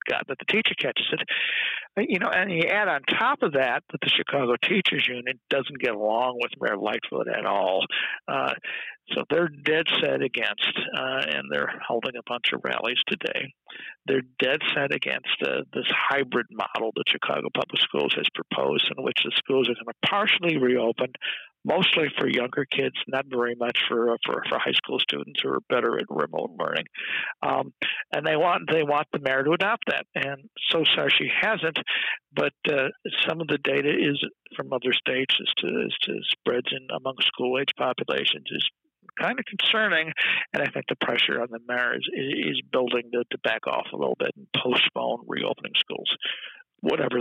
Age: 60-79